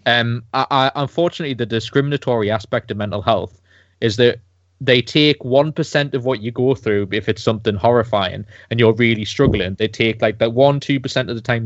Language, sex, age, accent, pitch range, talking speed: English, male, 20-39, British, 105-125 Hz, 190 wpm